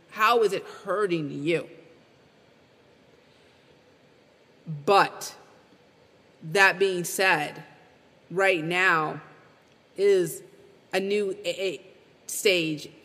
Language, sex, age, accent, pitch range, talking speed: English, female, 30-49, American, 170-205 Hz, 70 wpm